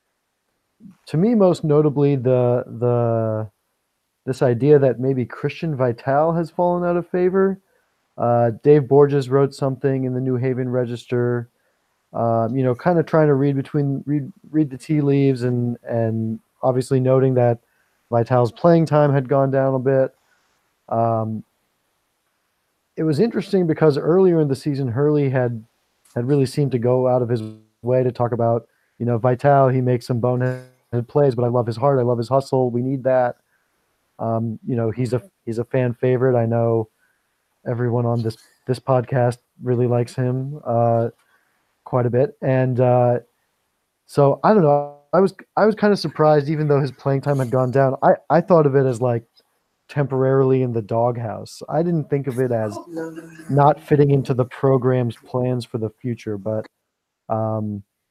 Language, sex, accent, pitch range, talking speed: English, male, American, 120-145 Hz, 175 wpm